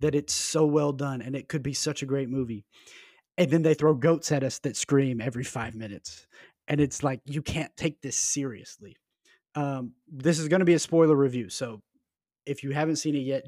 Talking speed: 220 wpm